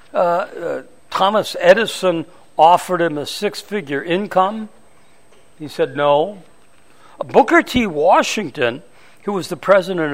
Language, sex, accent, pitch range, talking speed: English, male, American, 145-200 Hz, 110 wpm